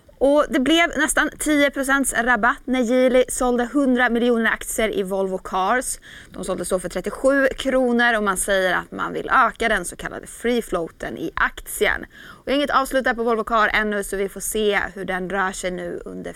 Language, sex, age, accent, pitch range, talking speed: Swedish, female, 20-39, native, 200-265 Hz, 190 wpm